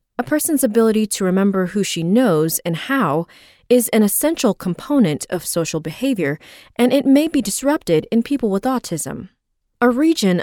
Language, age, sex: English, 20-39, female